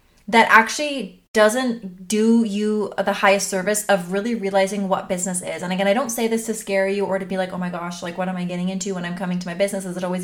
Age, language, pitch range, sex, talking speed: 20-39, English, 185-210 Hz, female, 265 wpm